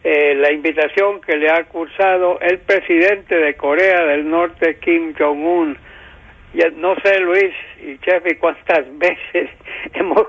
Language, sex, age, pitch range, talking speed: English, male, 60-79, 155-185 Hz, 135 wpm